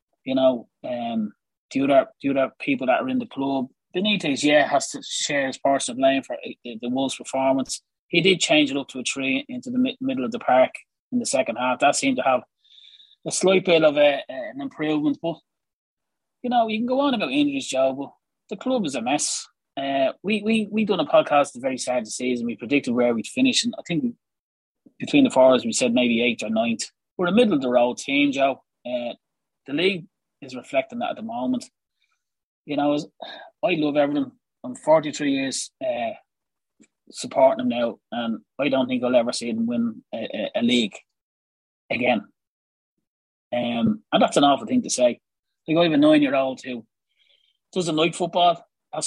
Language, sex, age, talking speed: English, male, 30-49, 205 wpm